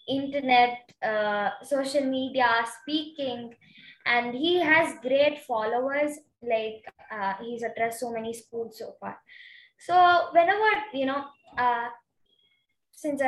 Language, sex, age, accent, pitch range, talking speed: English, female, 20-39, Indian, 230-295 Hz, 115 wpm